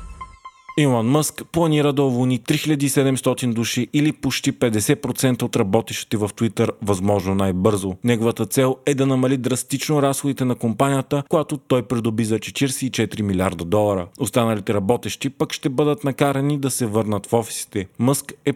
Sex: male